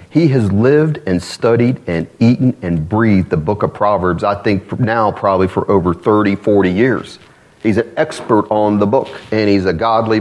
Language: English